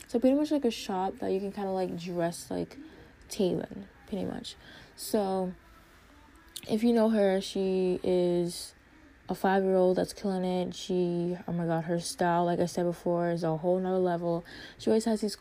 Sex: female